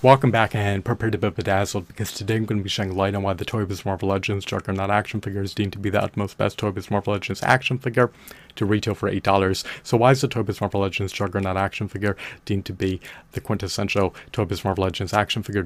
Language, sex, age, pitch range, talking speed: English, male, 30-49, 95-105 Hz, 250 wpm